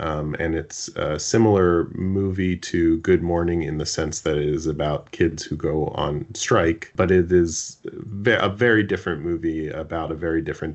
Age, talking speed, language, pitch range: 30-49, 180 wpm, English, 75-90 Hz